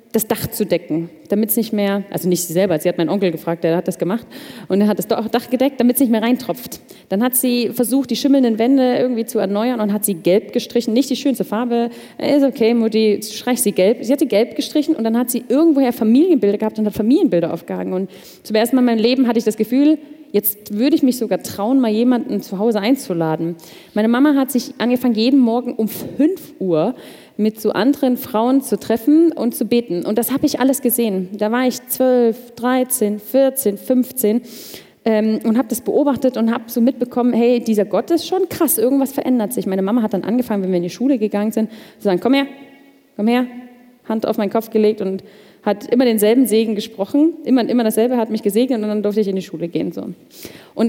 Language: German